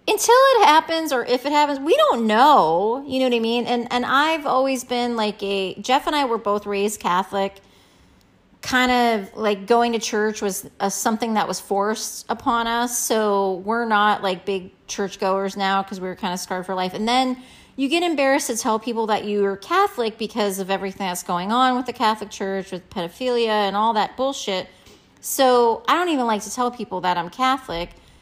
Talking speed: 205 wpm